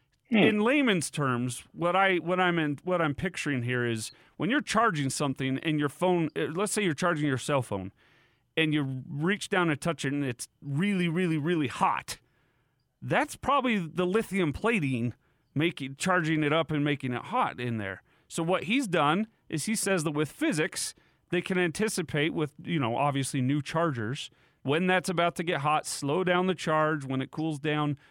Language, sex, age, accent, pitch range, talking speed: English, male, 40-59, American, 135-190 Hz, 190 wpm